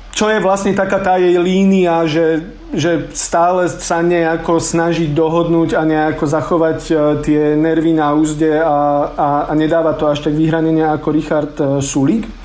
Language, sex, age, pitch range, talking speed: Slovak, male, 40-59, 160-190 Hz, 155 wpm